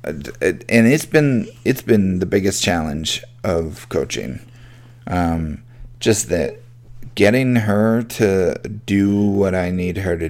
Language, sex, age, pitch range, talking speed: English, male, 30-49, 90-120 Hz, 130 wpm